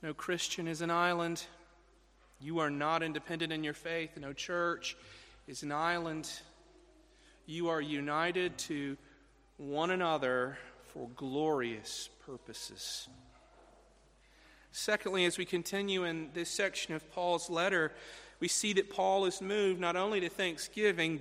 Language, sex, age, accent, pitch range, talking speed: English, male, 40-59, American, 150-195 Hz, 130 wpm